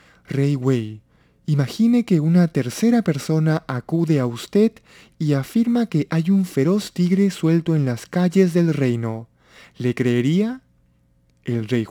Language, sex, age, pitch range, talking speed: Spanish, male, 20-39, 120-170 Hz, 135 wpm